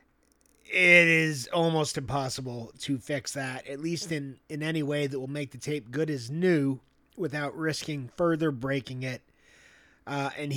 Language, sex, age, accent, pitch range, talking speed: English, male, 30-49, American, 135-185 Hz, 160 wpm